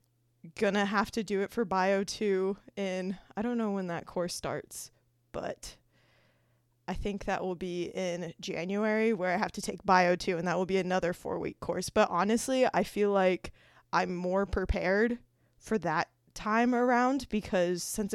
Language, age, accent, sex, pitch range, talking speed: English, 20-39, American, female, 175-205 Hz, 170 wpm